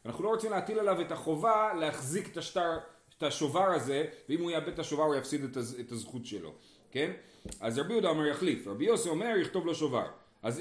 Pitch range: 140-200 Hz